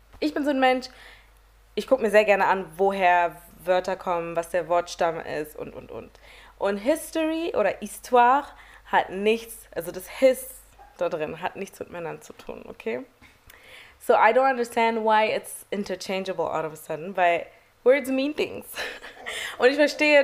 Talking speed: 170 wpm